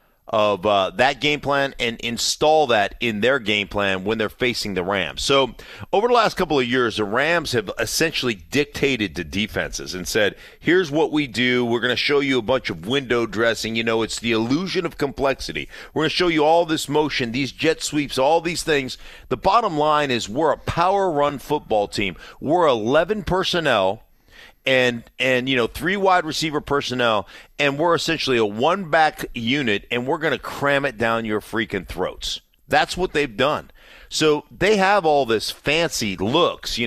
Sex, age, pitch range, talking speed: male, 40-59, 115-155 Hz, 190 wpm